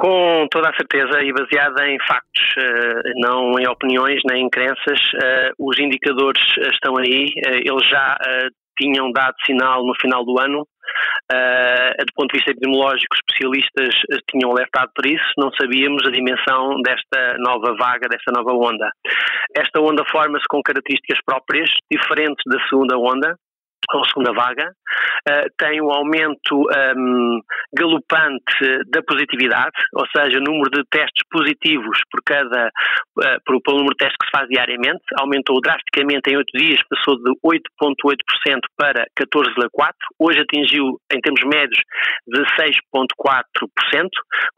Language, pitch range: Portuguese, 130-150 Hz